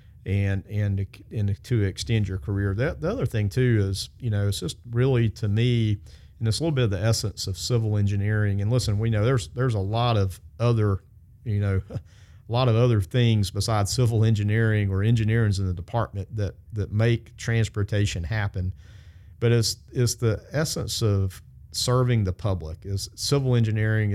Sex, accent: male, American